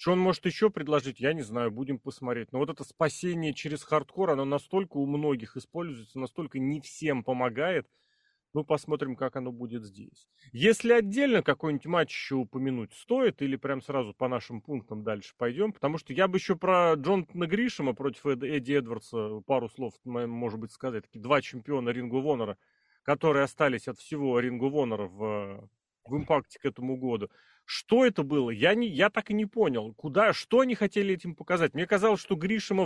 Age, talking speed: 30-49, 180 wpm